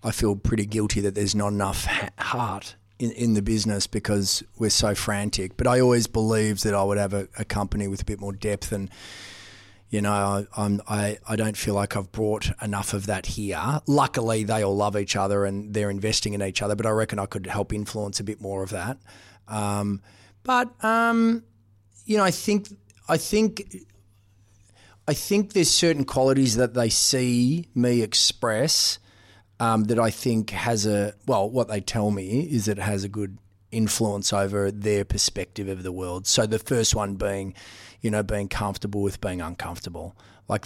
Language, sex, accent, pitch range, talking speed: English, male, Australian, 100-115 Hz, 195 wpm